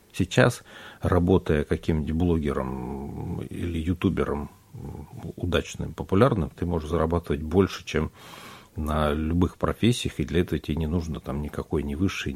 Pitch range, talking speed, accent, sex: 80-95 Hz, 125 wpm, native, male